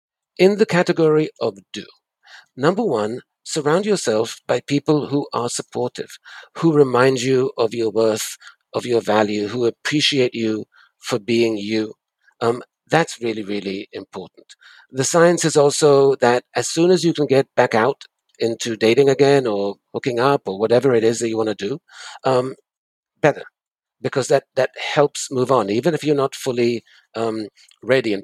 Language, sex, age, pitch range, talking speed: English, male, 60-79, 115-150 Hz, 165 wpm